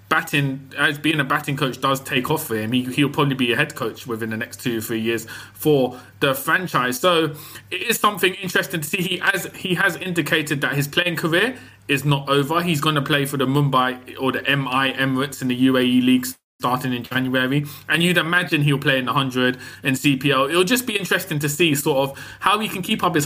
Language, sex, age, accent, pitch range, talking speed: English, male, 20-39, British, 130-165 Hz, 225 wpm